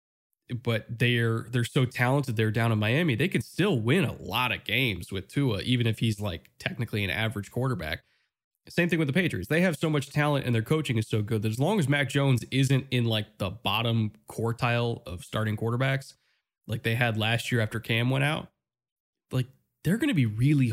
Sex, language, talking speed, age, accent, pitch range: male, English, 210 wpm, 20-39, American, 110-135 Hz